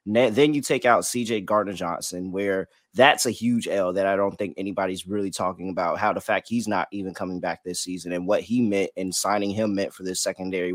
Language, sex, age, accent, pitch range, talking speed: English, male, 20-39, American, 95-135 Hz, 225 wpm